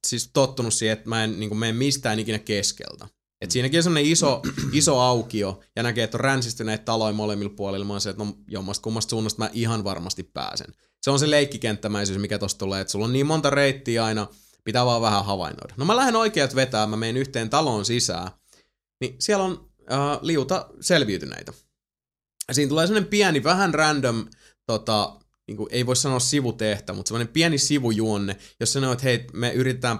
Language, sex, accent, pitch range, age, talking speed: Finnish, male, native, 105-130 Hz, 20-39, 175 wpm